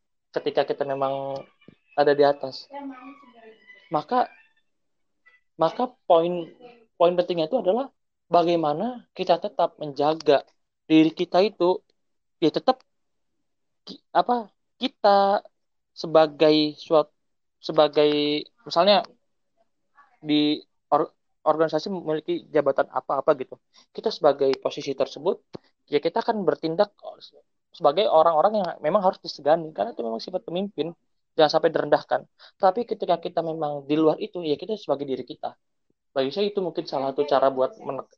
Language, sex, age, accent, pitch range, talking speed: Indonesian, male, 20-39, native, 150-200 Hz, 120 wpm